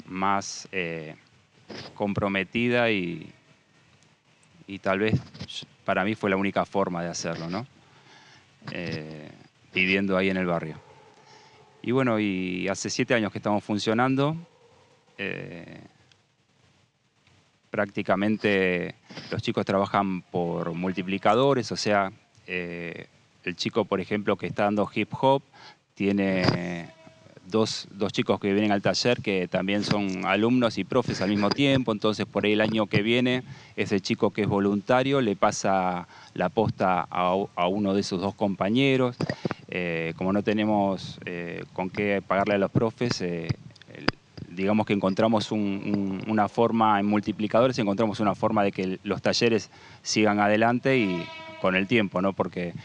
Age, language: 20-39, Spanish